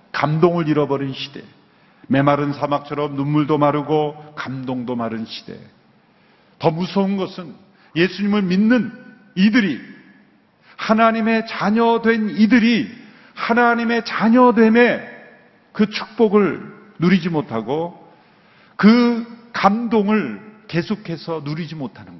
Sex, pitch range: male, 130-205 Hz